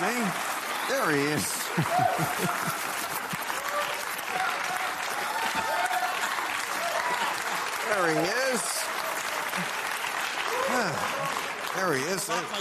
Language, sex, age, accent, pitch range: English, male, 50-69, American, 115-170 Hz